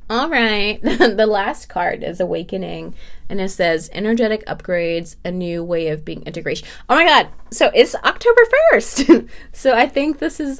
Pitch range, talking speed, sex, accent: 170-255 Hz, 175 wpm, female, American